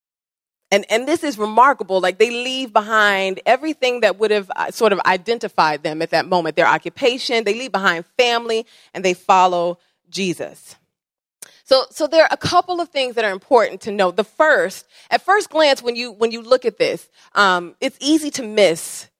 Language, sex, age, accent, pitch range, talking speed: English, female, 30-49, American, 190-255 Hz, 190 wpm